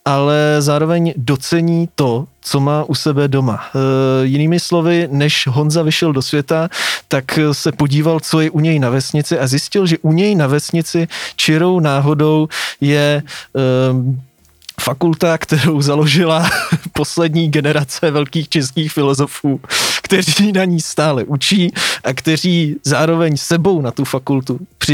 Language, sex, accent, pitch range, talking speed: Czech, male, native, 135-165 Hz, 135 wpm